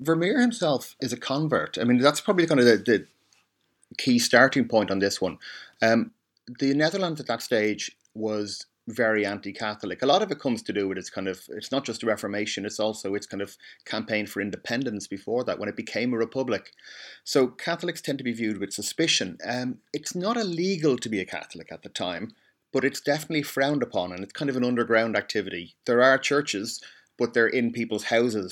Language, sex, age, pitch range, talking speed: English, male, 30-49, 105-140 Hz, 210 wpm